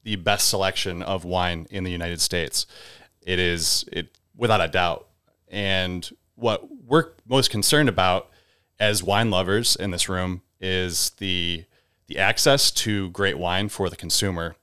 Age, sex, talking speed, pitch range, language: 30-49, male, 150 wpm, 90-110 Hz, English